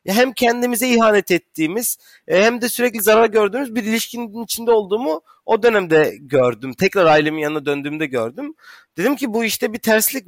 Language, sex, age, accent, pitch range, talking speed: German, male, 40-59, Turkish, 180-235 Hz, 160 wpm